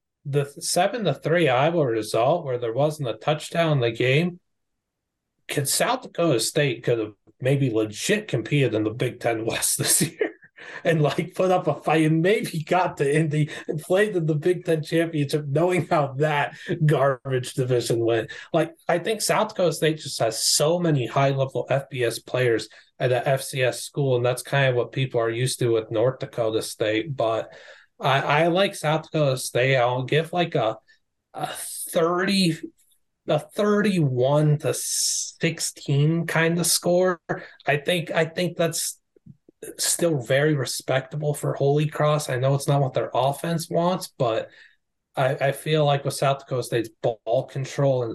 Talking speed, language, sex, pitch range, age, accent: 170 wpm, English, male, 125-165 Hz, 30-49, American